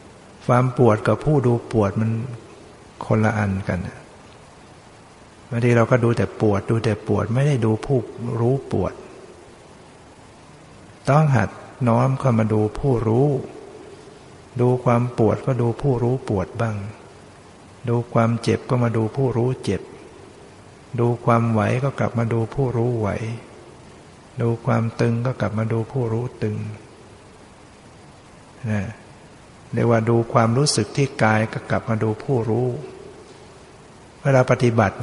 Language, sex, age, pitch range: Thai, male, 60-79, 105-125 Hz